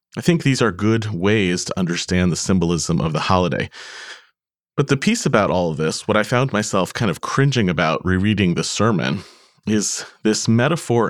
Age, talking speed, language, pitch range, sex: 30-49, 185 wpm, English, 95-125 Hz, male